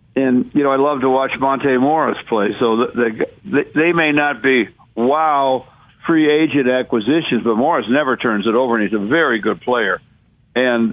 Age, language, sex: 60-79, English, male